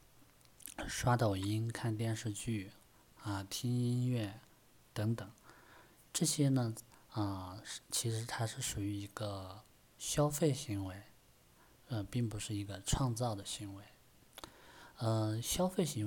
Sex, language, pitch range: male, Chinese, 100-125 Hz